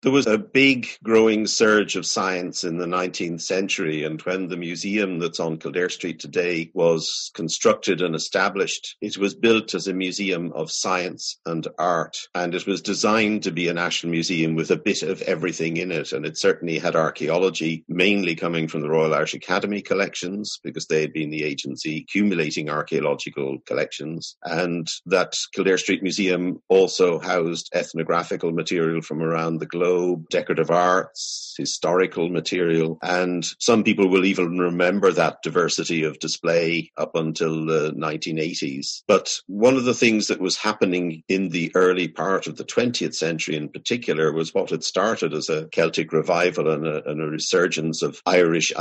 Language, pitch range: English, 80-100 Hz